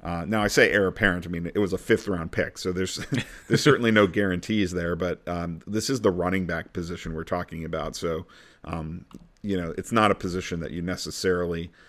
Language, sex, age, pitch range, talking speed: English, male, 40-59, 85-100 Hz, 215 wpm